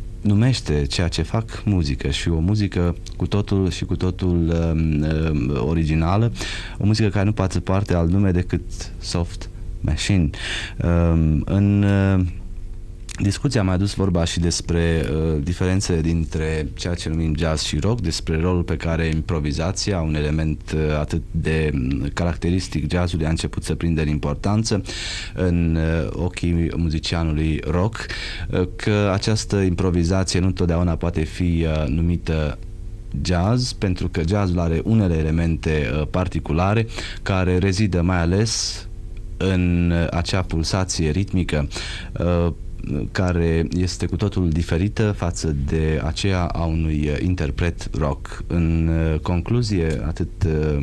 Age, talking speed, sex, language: 30-49, 135 wpm, male, Romanian